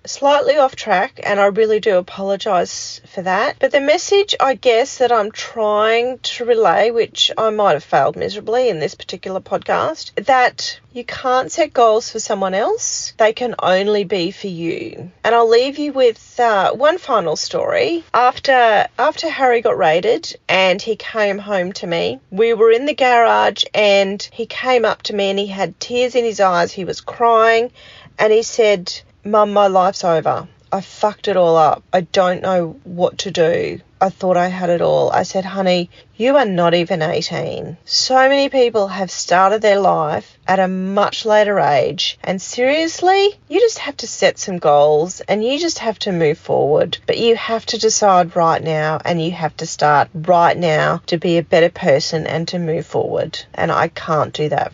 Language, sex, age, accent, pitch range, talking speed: English, female, 40-59, Australian, 185-255 Hz, 190 wpm